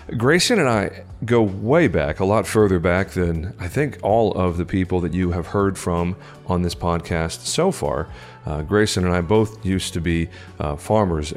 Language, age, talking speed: English, 40-59, 195 wpm